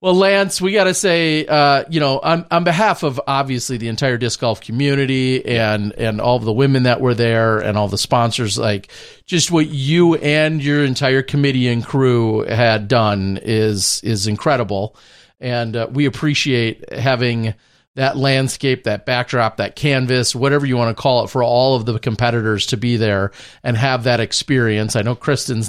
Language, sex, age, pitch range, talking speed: English, male, 40-59, 110-135 Hz, 180 wpm